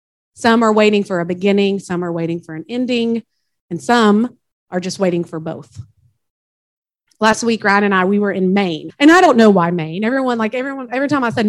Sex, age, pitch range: female, 30-49, 180-235 Hz